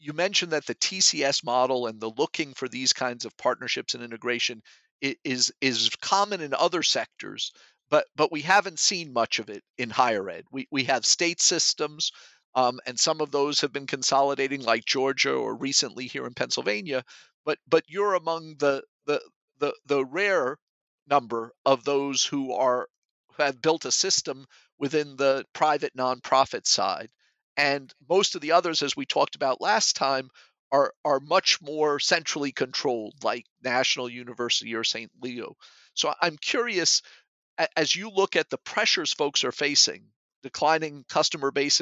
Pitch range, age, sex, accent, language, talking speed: 130-160 Hz, 50-69, male, American, English, 165 wpm